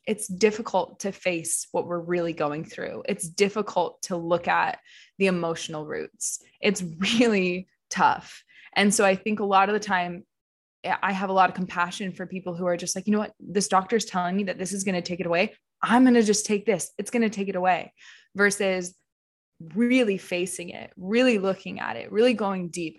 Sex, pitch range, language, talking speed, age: female, 170-210 Hz, English, 200 wpm, 20-39